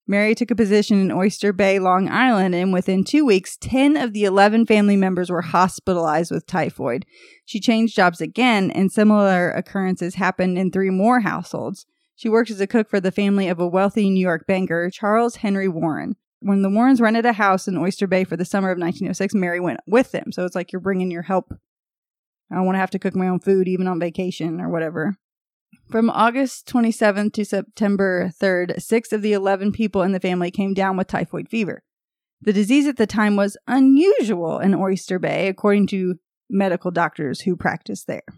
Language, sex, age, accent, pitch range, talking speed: English, female, 20-39, American, 185-215 Hz, 200 wpm